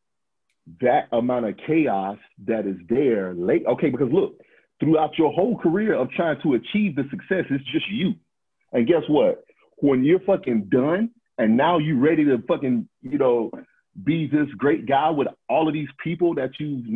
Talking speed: 175 wpm